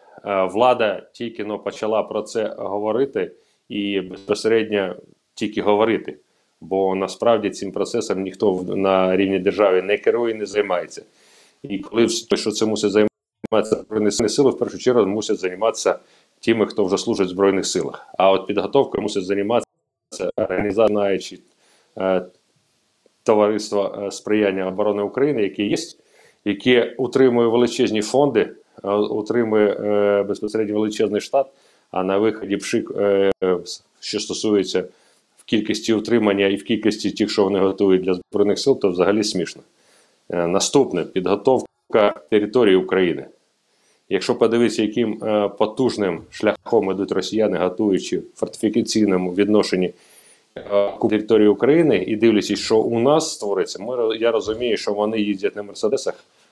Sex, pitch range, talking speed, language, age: male, 100-110 Hz, 130 wpm, Ukrainian, 30-49